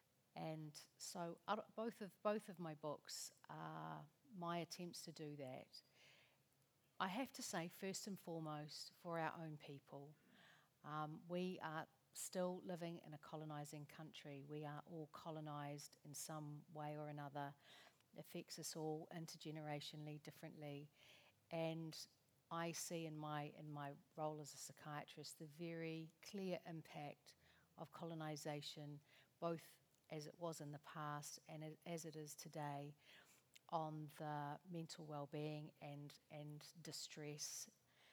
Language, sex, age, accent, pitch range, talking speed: English, female, 50-69, Australian, 150-170 Hz, 140 wpm